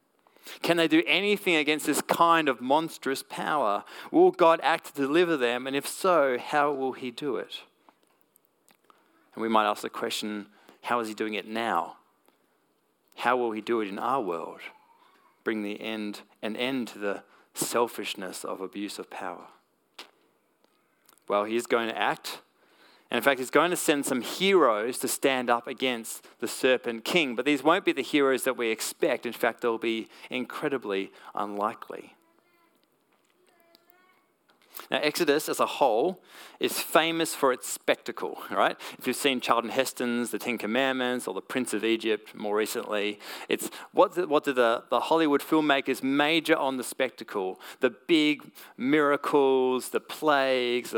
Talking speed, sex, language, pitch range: 160 wpm, male, English, 120-165 Hz